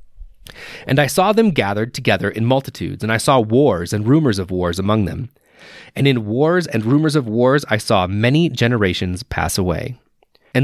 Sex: male